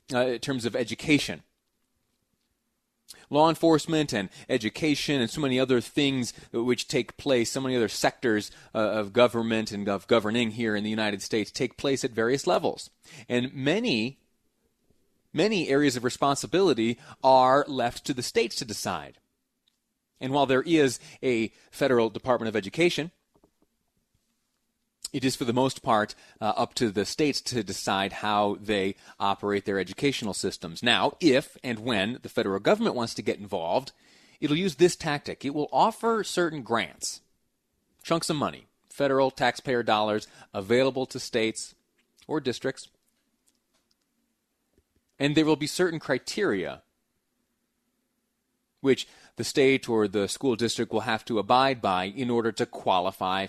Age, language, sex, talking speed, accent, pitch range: 30-49, English, male, 145 wpm, American, 110-145 Hz